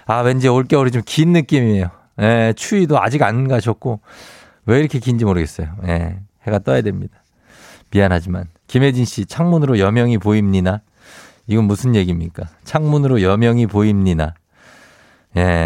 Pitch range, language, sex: 95-130 Hz, Korean, male